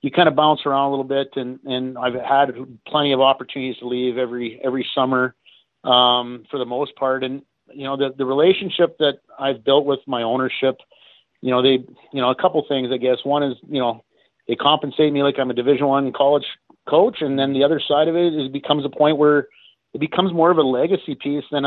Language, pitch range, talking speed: English, 125-140 Hz, 225 wpm